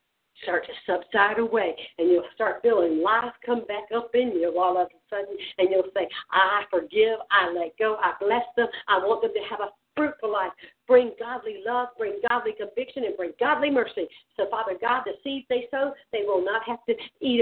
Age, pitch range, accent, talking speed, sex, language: 60-79, 205-295 Hz, American, 205 wpm, female, English